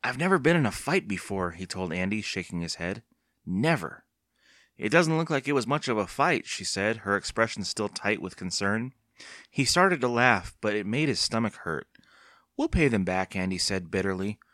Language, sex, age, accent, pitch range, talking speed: English, male, 30-49, American, 95-145 Hz, 200 wpm